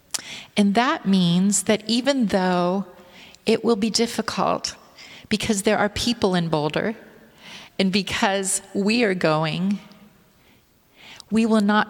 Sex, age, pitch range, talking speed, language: female, 40-59, 185-215 Hz, 120 wpm, English